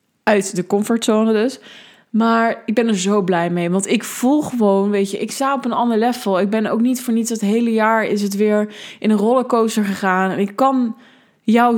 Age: 20-39